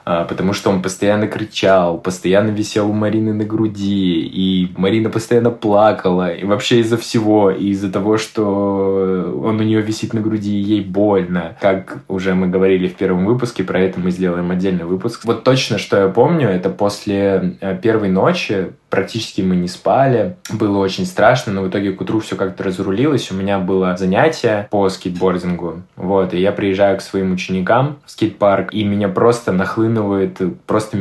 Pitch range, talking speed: 95-110 Hz, 170 wpm